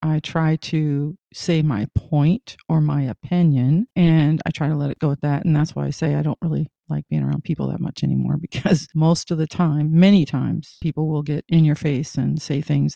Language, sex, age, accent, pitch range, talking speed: English, female, 40-59, American, 150-170 Hz, 225 wpm